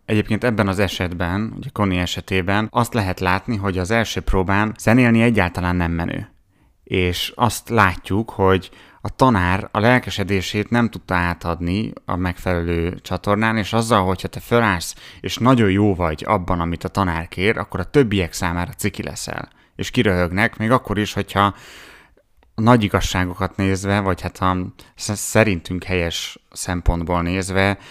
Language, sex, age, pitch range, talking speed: Hungarian, male, 30-49, 90-110 Hz, 150 wpm